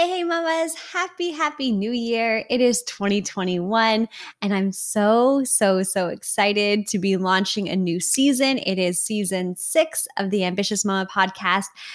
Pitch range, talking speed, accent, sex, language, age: 195-240 Hz, 155 wpm, American, female, English, 20-39